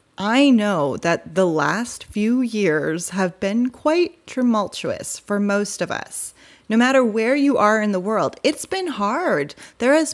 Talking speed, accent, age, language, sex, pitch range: 165 wpm, American, 30-49, English, female, 180-245 Hz